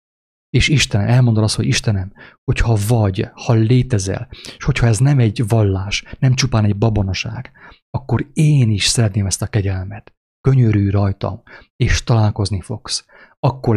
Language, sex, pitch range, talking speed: English, male, 100-125 Hz, 145 wpm